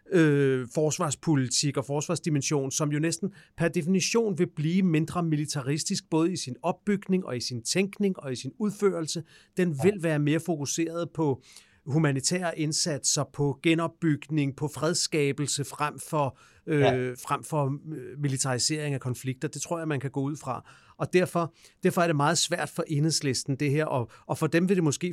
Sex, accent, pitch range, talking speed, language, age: male, native, 140-170 Hz, 160 wpm, Danish, 40-59